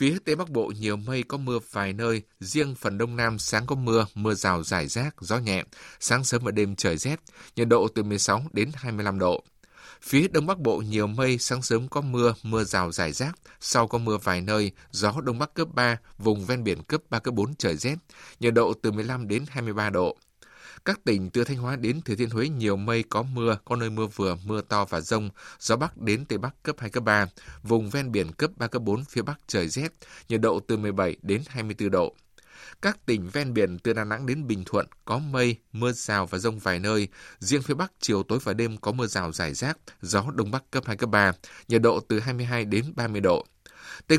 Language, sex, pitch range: Vietnamese, male, 100-125 Hz